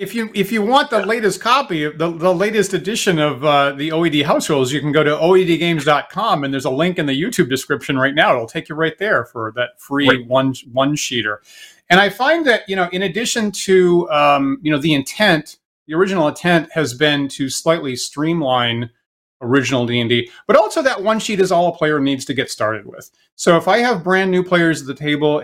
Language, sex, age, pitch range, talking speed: English, male, 30-49, 130-170 Hz, 210 wpm